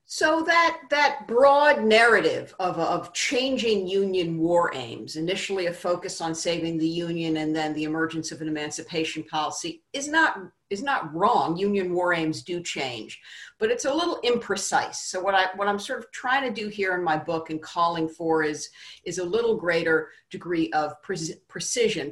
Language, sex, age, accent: English, female, 50-69, American